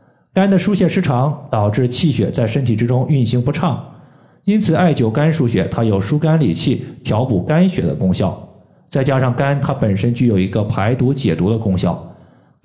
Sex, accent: male, native